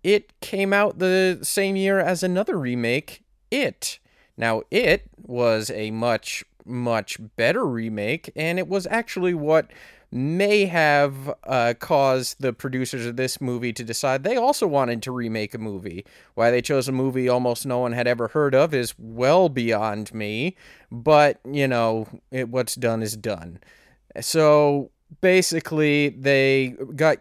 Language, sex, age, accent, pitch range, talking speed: English, male, 30-49, American, 120-155 Hz, 150 wpm